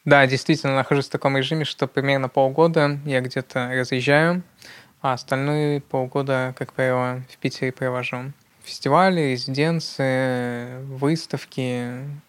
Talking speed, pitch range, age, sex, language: 110 wpm, 130-145 Hz, 20-39, male, Russian